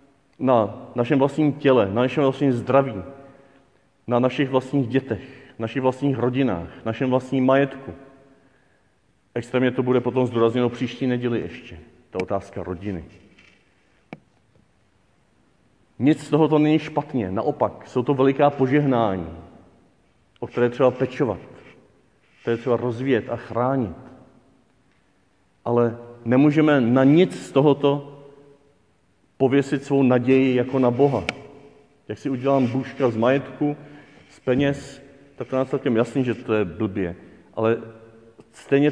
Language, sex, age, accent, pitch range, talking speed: Czech, male, 40-59, native, 115-140 Hz, 120 wpm